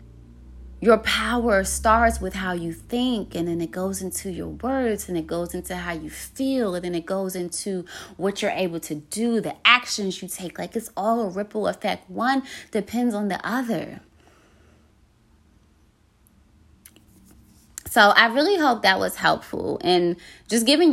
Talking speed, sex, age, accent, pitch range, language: 160 wpm, female, 20-39, American, 180-255 Hz, English